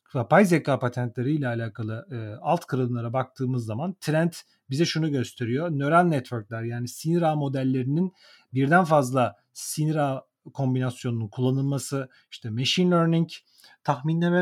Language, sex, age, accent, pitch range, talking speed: Turkish, male, 40-59, native, 130-170 Hz, 120 wpm